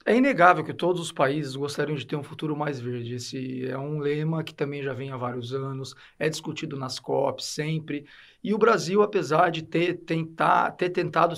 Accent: Brazilian